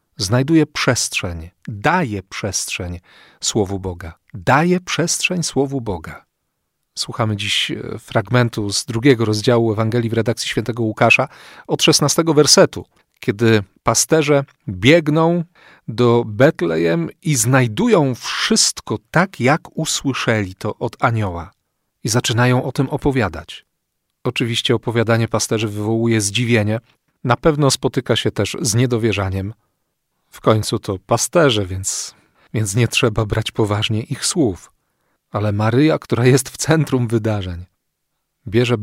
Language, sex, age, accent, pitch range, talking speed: Polish, male, 40-59, native, 105-140 Hz, 115 wpm